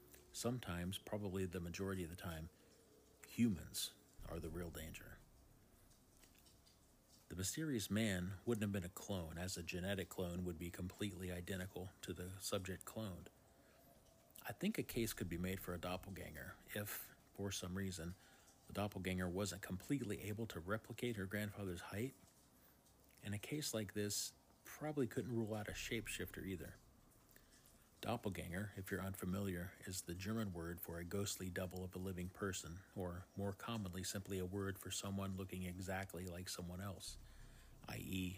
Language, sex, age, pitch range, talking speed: English, male, 40-59, 90-105 Hz, 155 wpm